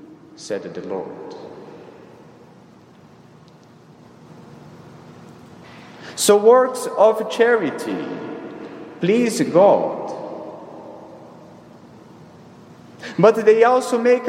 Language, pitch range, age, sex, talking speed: English, 215-250 Hz, 40-59, male, 55 wpm